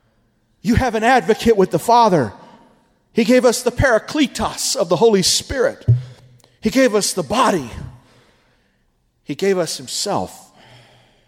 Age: 40-59